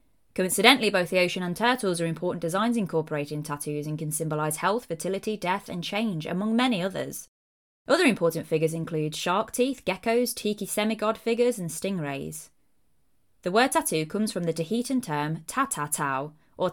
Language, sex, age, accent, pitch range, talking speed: English, female, 20-39, British, 155-220 Hz, 160 wpm